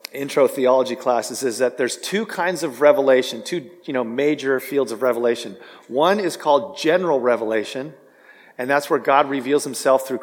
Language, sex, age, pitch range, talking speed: English, male, 40-59, 120-155 Hz, 170 wpm